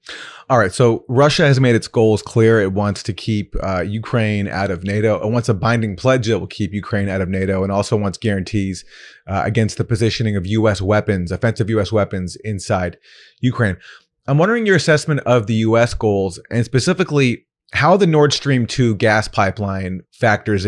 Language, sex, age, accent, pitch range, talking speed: English, male, 30-49, American, 100-125 Hz, 185 wpm